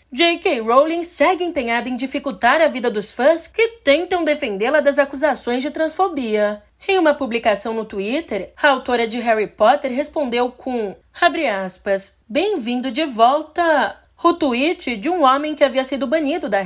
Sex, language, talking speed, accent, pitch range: female, Portuguese, 160 wpm, Brazilian, 225-310 Hz